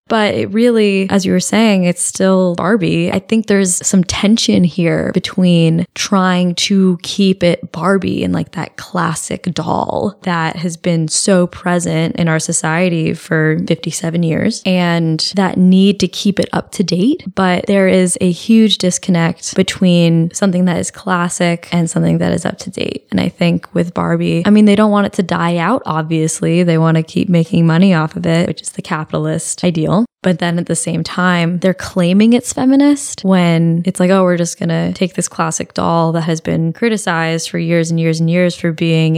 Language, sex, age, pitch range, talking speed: English, female, 10-29, 165-195 Hz, 195 wpm